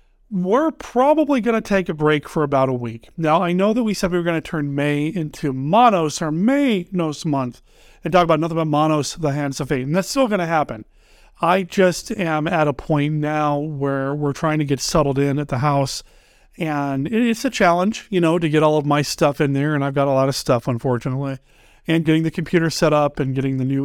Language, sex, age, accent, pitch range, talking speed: English, male, 40-59, American, 145-190 Hz, 235 wpm